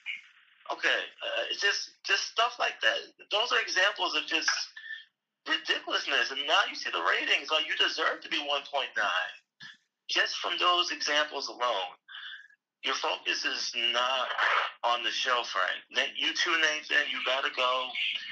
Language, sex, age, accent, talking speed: English, male, 30-49, American, 150 wpm